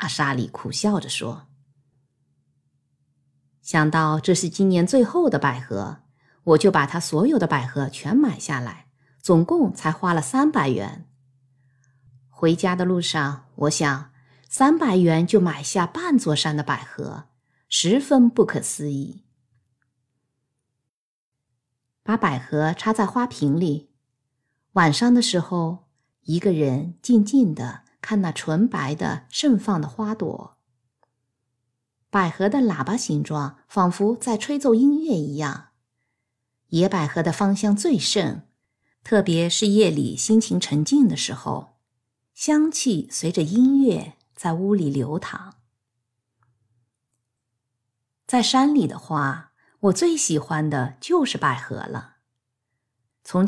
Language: Chinese